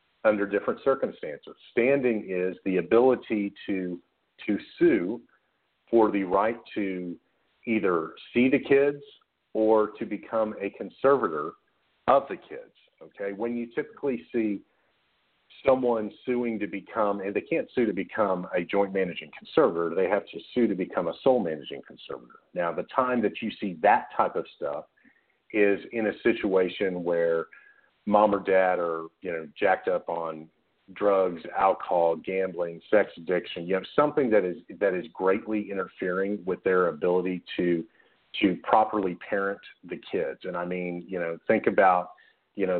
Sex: male